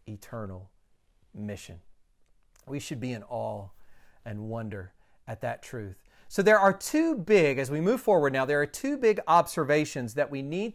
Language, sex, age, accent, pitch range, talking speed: English, male, 40-59, American, 120-175 Hz, 165 wpm